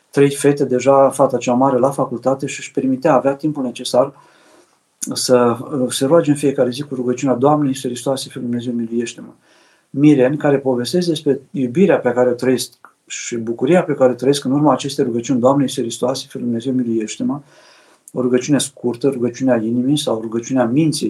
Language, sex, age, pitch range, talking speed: Romanian, male, 50-69, 125-150 Hz, 175 wpm